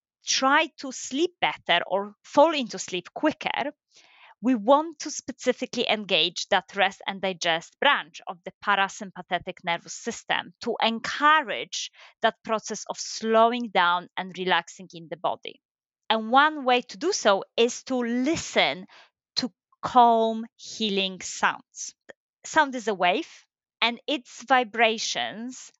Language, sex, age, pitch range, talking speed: English, female, 20-39, 185-255 Hz, 130 wpm